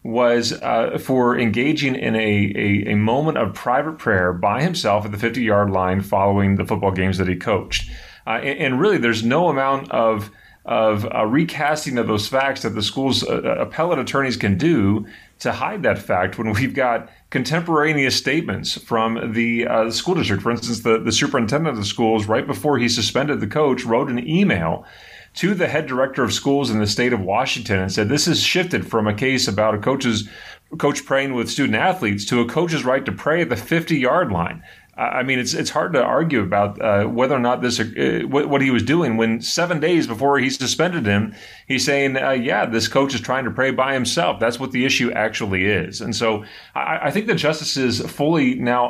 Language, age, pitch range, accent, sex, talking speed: English, 30-49, 110-140 Hz, American, male, 210 wpm